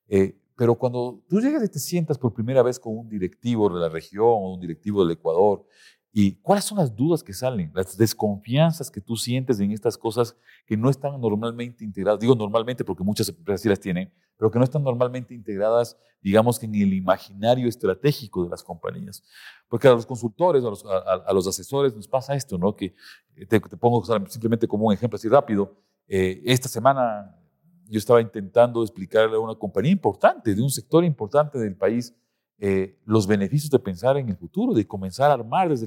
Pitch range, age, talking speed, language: 105-145 Hz, 40-59, 200 wpm, Spanish